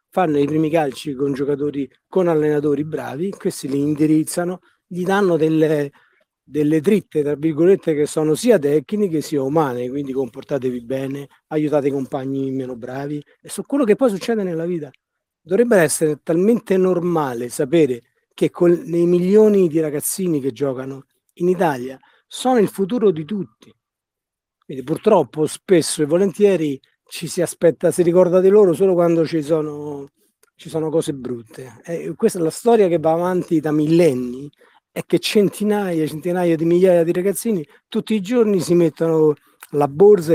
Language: Italian